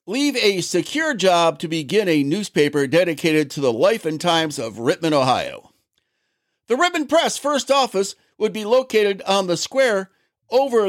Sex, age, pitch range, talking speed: male, 50-69, 160-245 Hz, 160 wpm